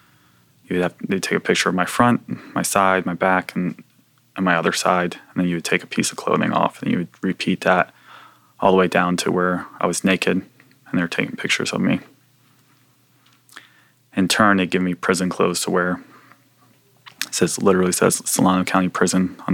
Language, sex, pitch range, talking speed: English, male, 90-110 Hz, 195 wpm